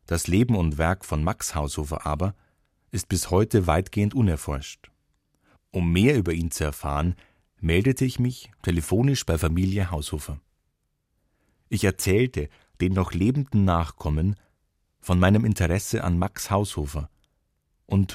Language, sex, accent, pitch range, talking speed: German, male, German, 75-105 Hz, 130 wpm